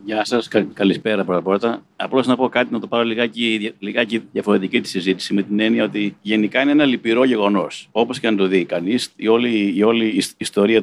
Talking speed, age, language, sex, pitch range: 200 wpm, 50-69, Greek, male, 100-120 Hz